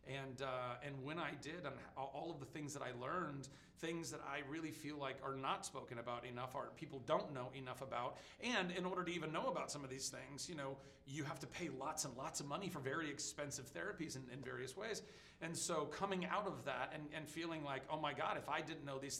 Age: 40-59